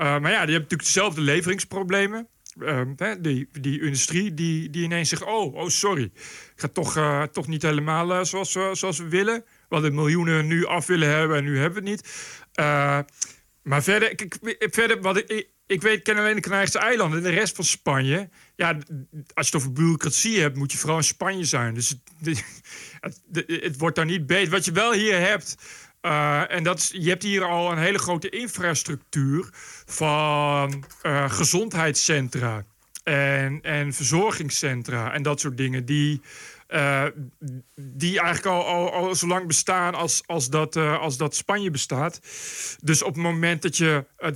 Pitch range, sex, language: 145-180 Hz, male, Dutch